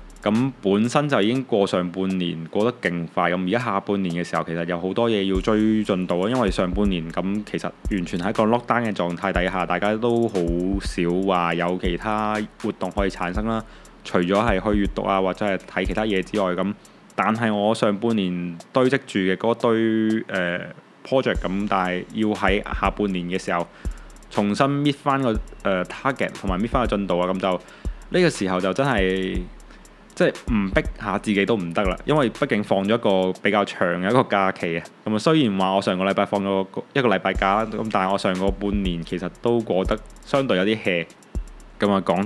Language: Chinese